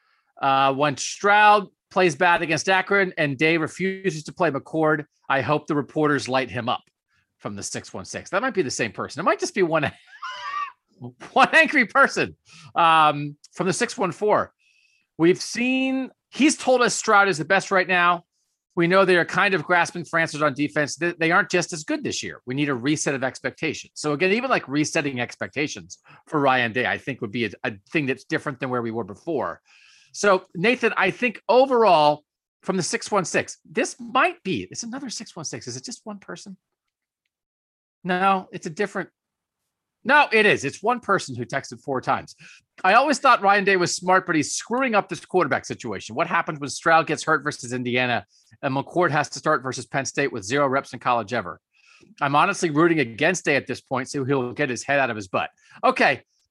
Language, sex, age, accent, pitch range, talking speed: English, male, 40-59, American, 140-200 Hz, 200 wpm